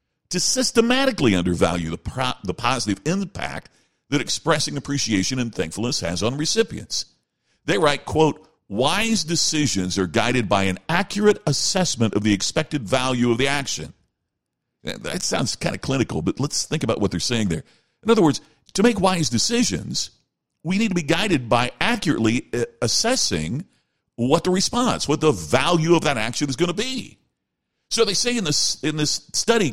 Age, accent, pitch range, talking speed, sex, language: 50-69, American, 105-175 Hz, 170 wpm, male, English